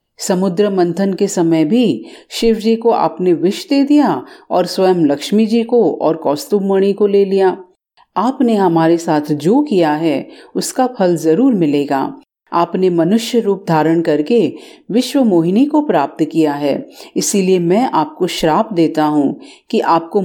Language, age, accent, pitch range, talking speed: Hindi, 40-59, native, 160-235 Hz, 150 wpm